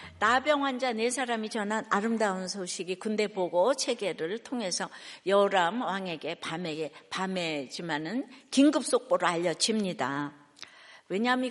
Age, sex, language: 60-79, female, Korean